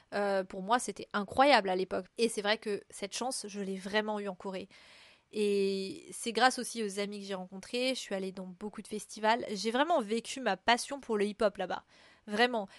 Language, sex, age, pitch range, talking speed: French, female, 20-39, 205-235 Hz, 210 wpm